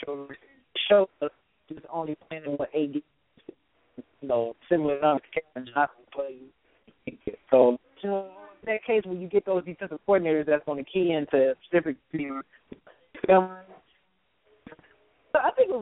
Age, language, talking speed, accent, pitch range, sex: 20-39, English, 130 wpm, American, 155-205 Hz, male